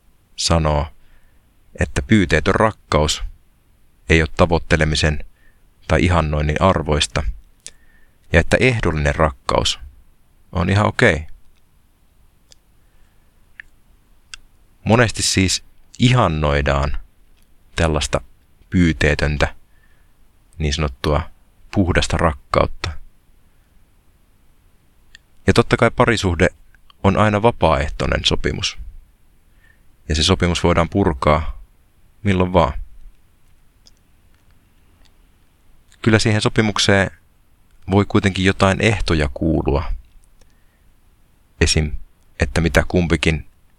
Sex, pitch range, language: male, 75-95 Hz, Finnish